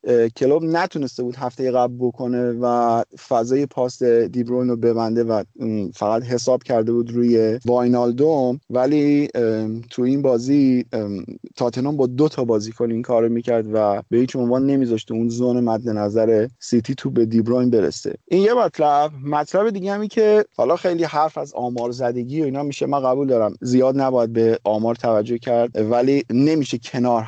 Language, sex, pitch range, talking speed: Persian, male, 120-160 Hz, 165 wpm